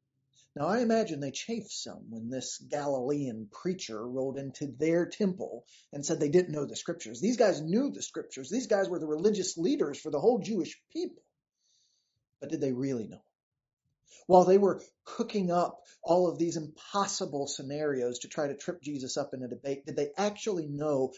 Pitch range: 135-180 Hz